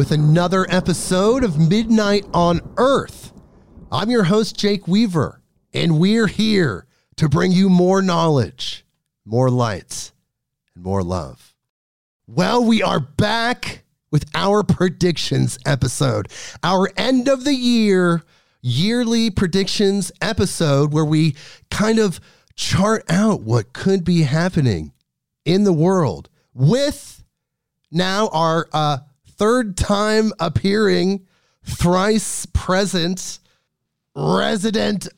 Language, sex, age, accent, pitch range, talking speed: English, male, 40-59, American, 150-205 Hz, 110 wpm